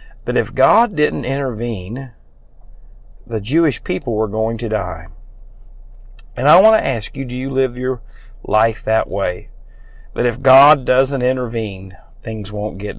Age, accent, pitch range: 50-69, American, 105-130 Hz